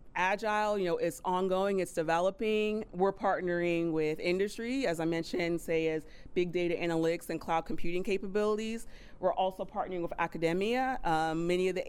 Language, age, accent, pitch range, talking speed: English, 30-49, American, 160-185 Hz, 160 wpm